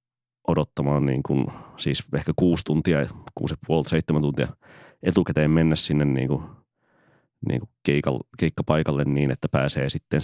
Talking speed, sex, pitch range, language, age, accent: 125 wpm, male, 70-85 Hz, Finnish, 30-49, native